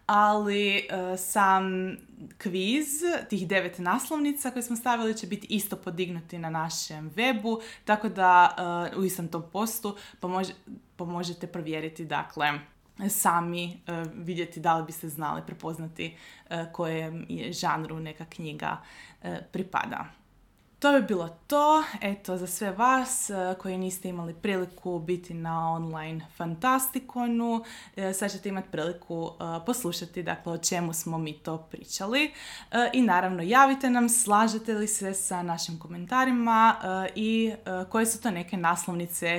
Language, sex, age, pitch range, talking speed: Croatian, female, 20-39, 170-220 Hz, 135 wpm